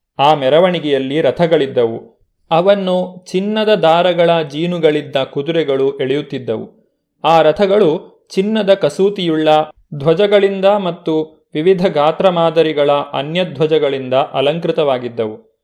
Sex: male